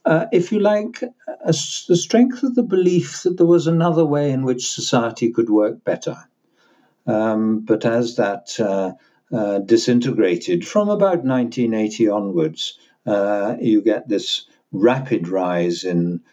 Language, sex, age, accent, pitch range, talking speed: English, male, 60-79, British, 100-150 Hz, 140 wpm